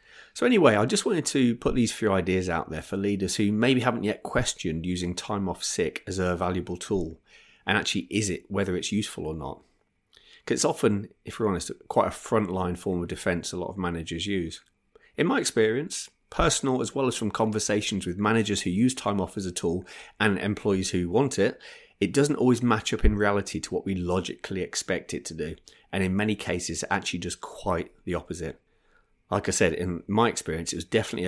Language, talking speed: English, 210 wpm